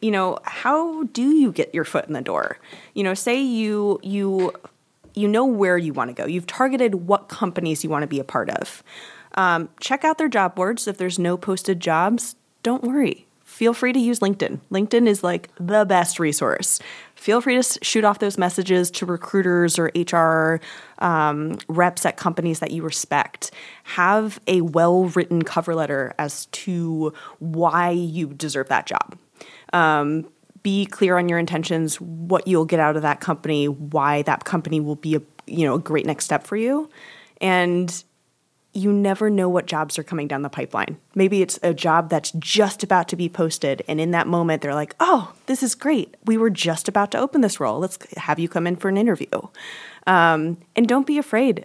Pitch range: 160-205 Hz